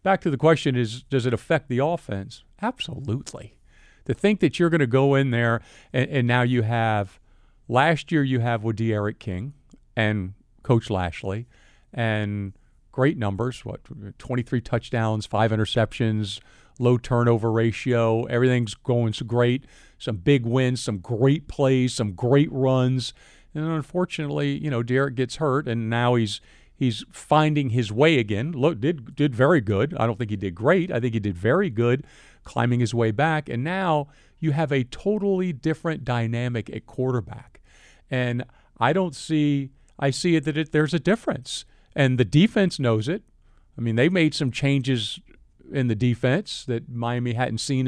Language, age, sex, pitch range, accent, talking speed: English, 50-69, male, 115-145 Hz, American, 170 wpm